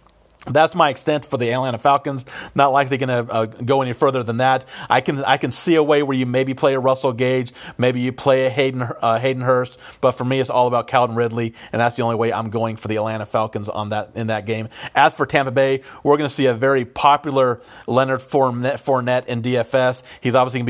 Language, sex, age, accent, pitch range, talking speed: English, male, 40-59, American, 120-135 Hz, 230 wpm